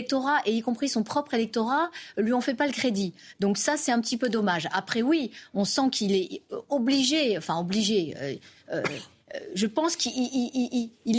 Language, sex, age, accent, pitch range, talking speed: French, female, 30-49, French, 195-255 Hz, 175 wpm